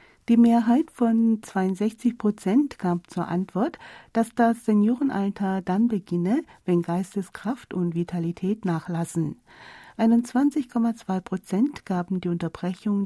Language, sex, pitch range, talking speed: German, female, 175-230 Hz, 105 wpm